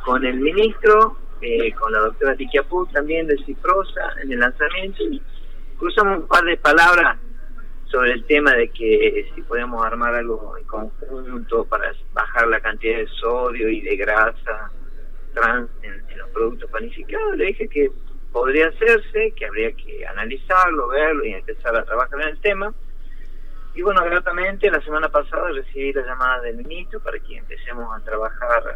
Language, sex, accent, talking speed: Spanish, male, Argentinian, 165 wpm